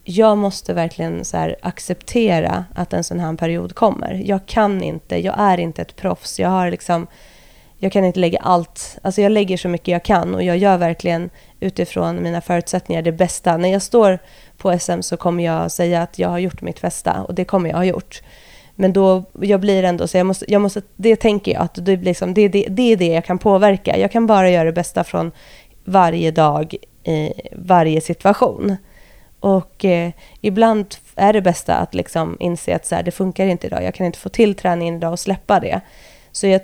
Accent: native